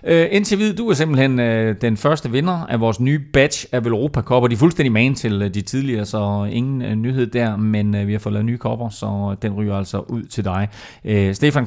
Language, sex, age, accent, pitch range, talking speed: Danish, male, 30-49, native, 110-150 Hz, 235 wpm